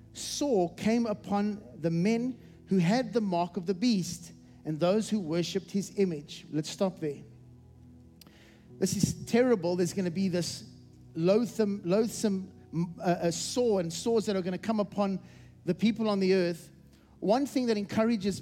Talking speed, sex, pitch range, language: 160 wpm, male, 170-215 Hz, English